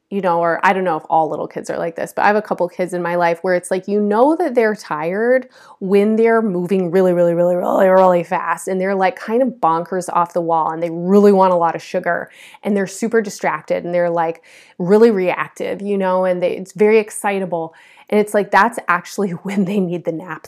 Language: English